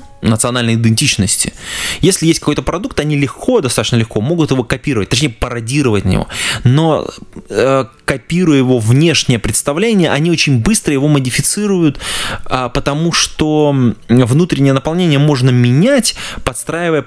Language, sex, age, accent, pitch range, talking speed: Russian, male, 20-39, native, 110-145 Hz, 115 wpm